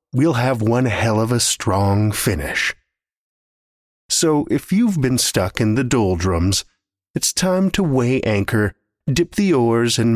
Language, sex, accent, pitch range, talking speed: English, male, American, 100-155 Hz, 150 wpm